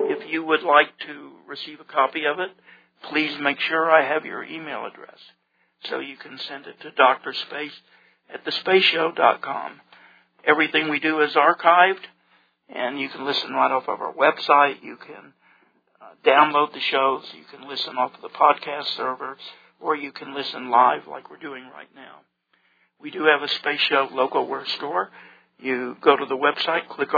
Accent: American